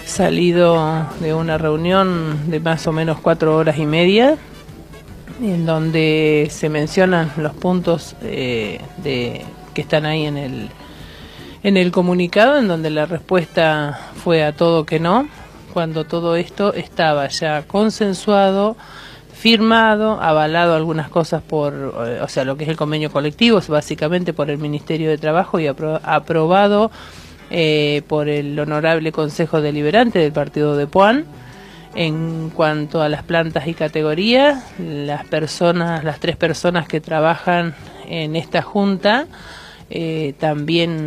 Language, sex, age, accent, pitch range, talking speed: Spanish, male, 50-69, Argentinian, 150-175 Hz, 140 wpm